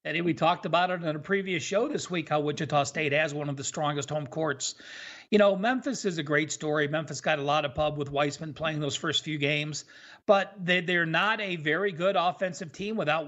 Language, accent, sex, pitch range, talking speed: English, American, male, 155-210 Hz, 225 wpm